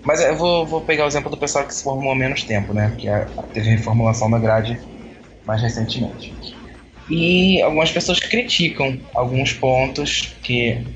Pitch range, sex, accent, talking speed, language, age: 115-150 Hz, male, Brazilian, 180 wpm, Portuguese, 20-39